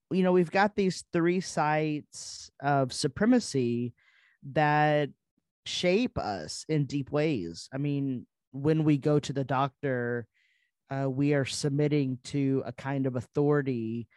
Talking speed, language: 135 wpm, English